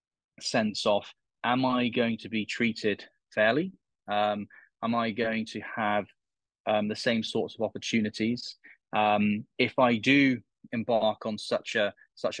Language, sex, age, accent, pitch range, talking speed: English, male, 20-39, British, 105-125 Hz, 145 wpm